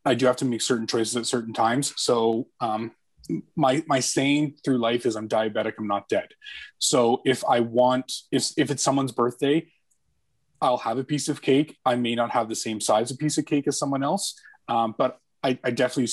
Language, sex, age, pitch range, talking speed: English, male, 20-39, 115-130 Hz, 210 wpm